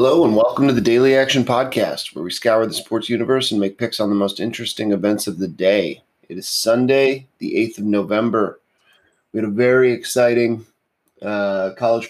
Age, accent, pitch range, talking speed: 30-49, American, 100-120 Hz, 195 wpm